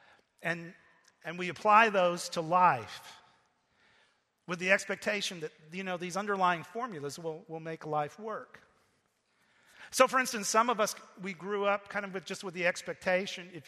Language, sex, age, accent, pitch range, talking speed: English, male, 50-69, American, 180-230 Hz, 165 wpm